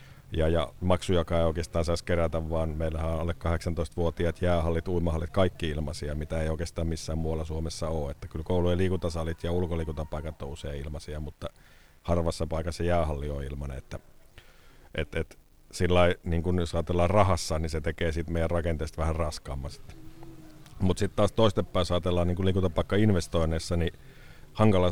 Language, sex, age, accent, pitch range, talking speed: Finnish, male, 50-69, native, 80-90 Hz, 160 wpm